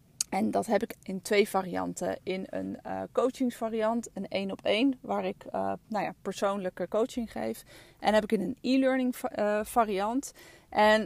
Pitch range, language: 190-230 Hz, Dutch